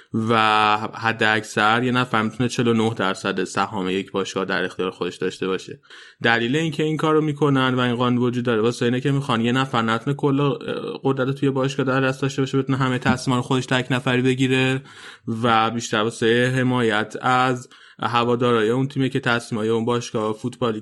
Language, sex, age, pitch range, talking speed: Persian, male, 20-39, 115-130 Hz, 175 wpm